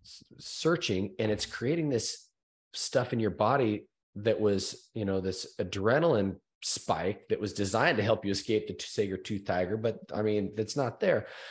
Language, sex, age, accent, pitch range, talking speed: English, male, 30-49, American, 95-115 Hz, 175 wpm